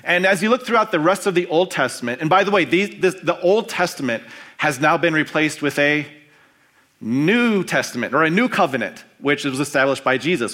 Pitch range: 135-185 Hz